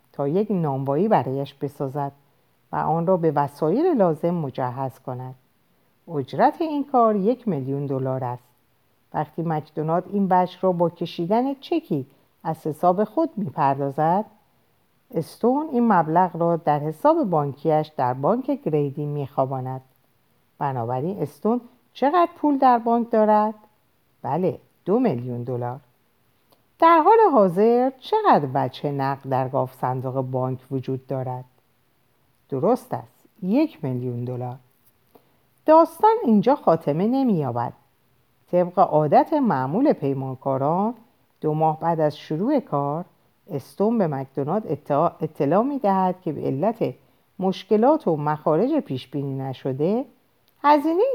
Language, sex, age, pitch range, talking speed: Persian, female, 50-69, 135-220 Hz, 115 wpm